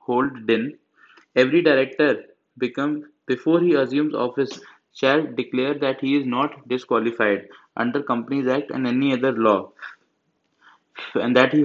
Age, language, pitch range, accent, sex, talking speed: 20-39, English, 125-145 Hz, Indian, male, 135 wpm